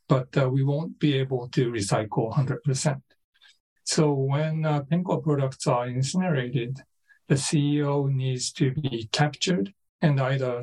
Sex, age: male, 50-69